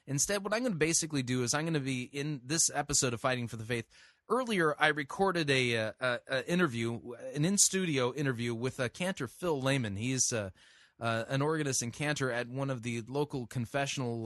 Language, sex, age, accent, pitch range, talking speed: English, male, 30-49, American, 125-160 Hz, 200 wpm